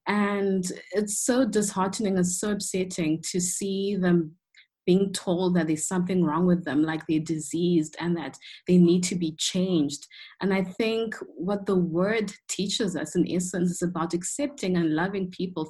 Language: English